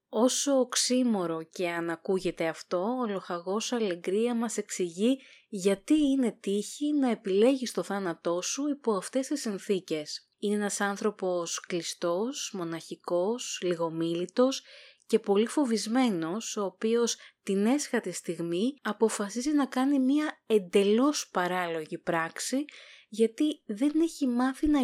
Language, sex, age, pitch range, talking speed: Greek, female, 20-39, 180-255 Hz, 115 wpm